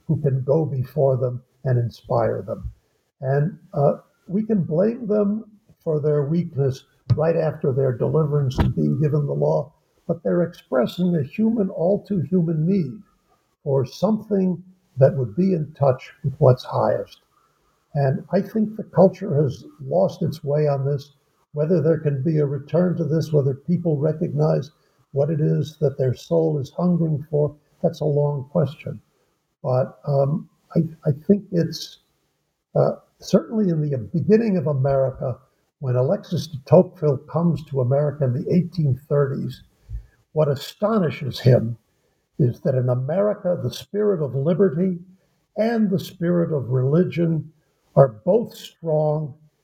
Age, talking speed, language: 60-79, 145 wpm, English